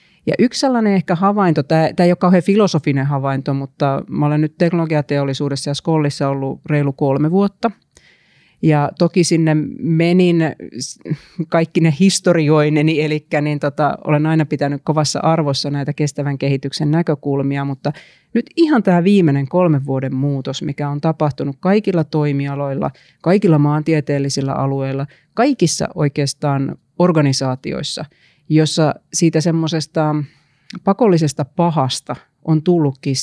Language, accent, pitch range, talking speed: Finnish, native, 140-165 Hz, 115 wpm